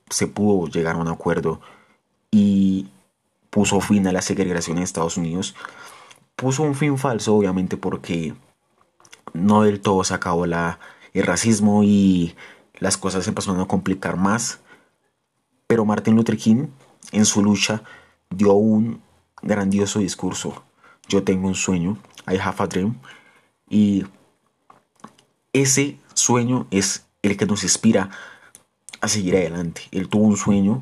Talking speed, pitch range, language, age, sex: 135 wpm, 90-105 Hz, English, 30-49, male